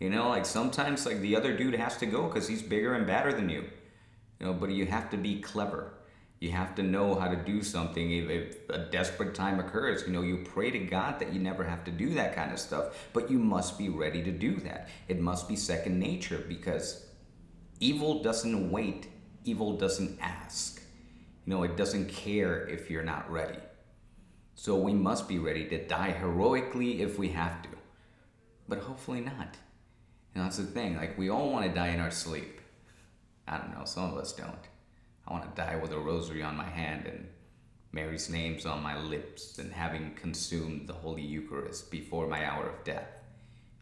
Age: 30-49